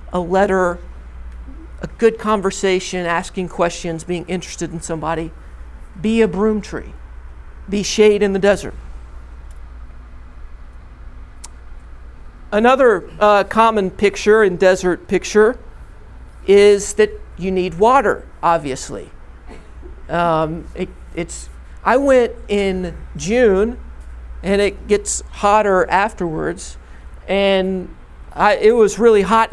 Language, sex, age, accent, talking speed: English, male, 50-69, American, 105 wpm